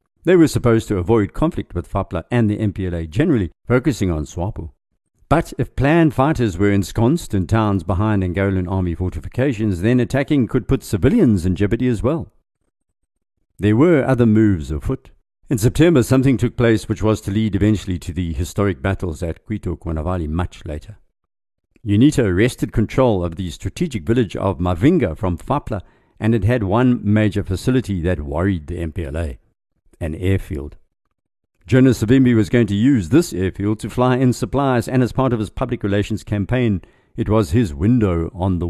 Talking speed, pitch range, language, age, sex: 170 wpm, 90-120 Hz, English, 50-69, male